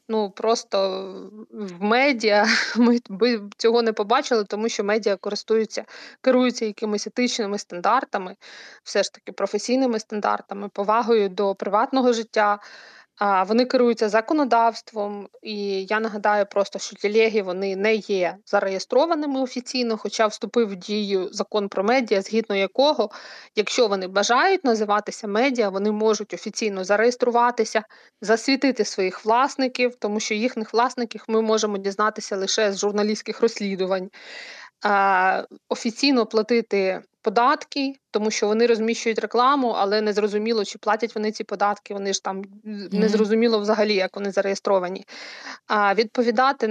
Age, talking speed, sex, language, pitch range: 20-39, 125 wpm, female, Ukrainian, 205-235 Hz